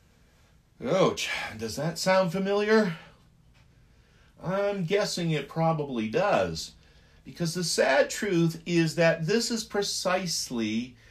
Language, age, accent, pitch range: English, 50-69, American, 115-185 Hz